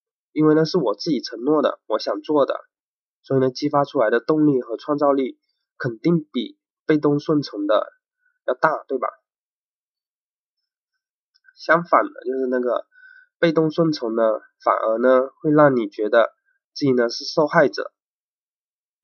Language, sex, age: Chinese, male, 20-39